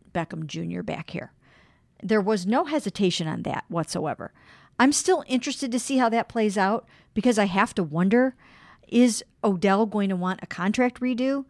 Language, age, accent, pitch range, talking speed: English, 50-69, American, 180-225 Hz, 170 wpm